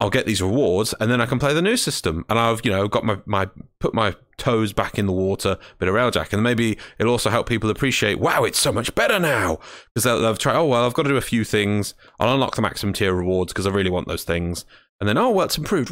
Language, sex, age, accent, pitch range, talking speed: English, male, 30-49, British, 105-145 Hz, 275 wpm